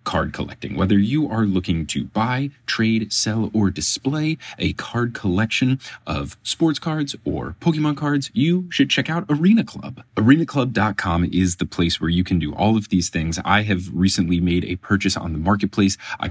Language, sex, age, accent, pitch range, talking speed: English, male, 30-49, American, 90-135 Hz, 180 wpm